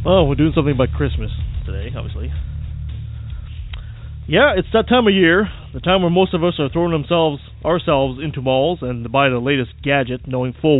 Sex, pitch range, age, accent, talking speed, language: male, 125-180 Hz, 20-39, American, 190 wpm, English